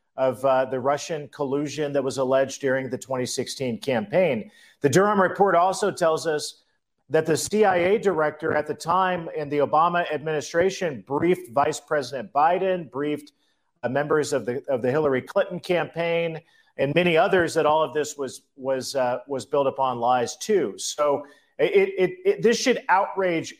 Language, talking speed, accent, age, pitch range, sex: English, 165 wpm, American, 40-59, 140-170 Hz, male